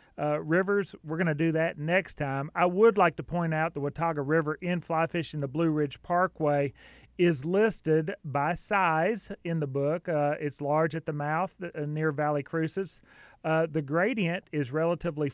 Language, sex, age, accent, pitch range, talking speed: English, male, 30-49, American, 150-175 Hz, 185 wpm